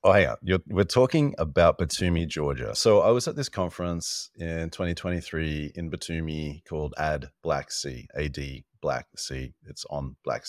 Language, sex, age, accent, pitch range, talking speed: English, male, 30-49, Australian, 70-85 Hz, 160 wpm